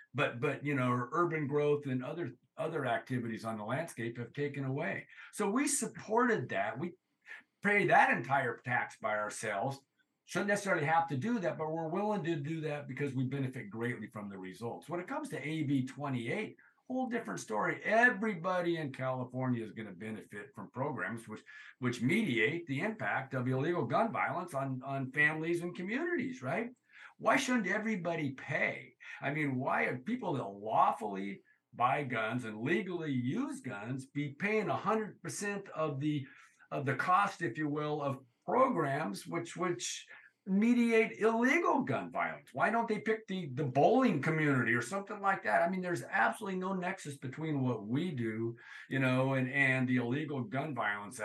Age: 50-69